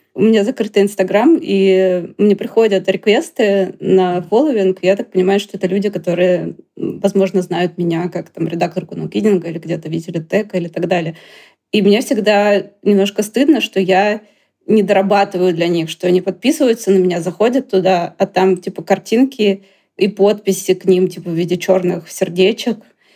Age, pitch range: 20-39, 180-200 Hz